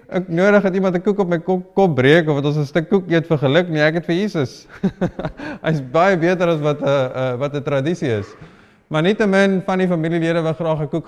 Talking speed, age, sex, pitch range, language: 240 wpm, 30-49, male, 145-185 Hz, English